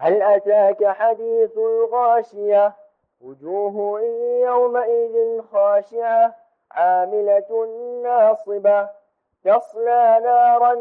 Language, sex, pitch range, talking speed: English, male, 205-245 Hz, 60 wpm